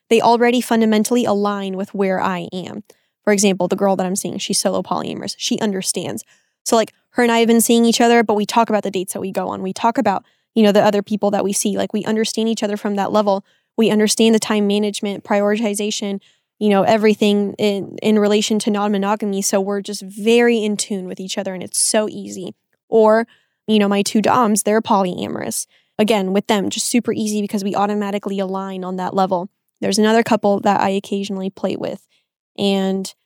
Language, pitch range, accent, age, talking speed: English, 195-220 Hz, American, 10-29, 210 wpm